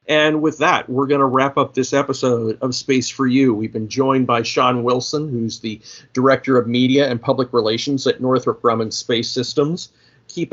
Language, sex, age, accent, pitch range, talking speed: English, male, 50-69, American, 125-140 Hz, 195 wpm